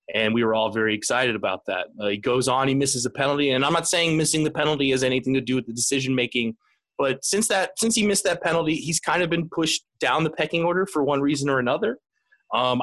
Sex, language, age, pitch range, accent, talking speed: male, English, 20-39, 125-170 Hz, American, 255 wpm